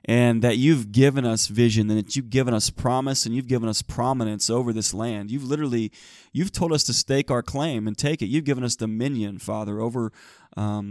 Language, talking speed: English, 215 wpm